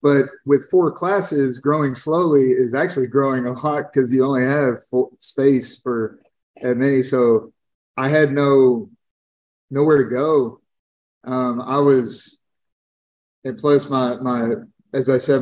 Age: 30-49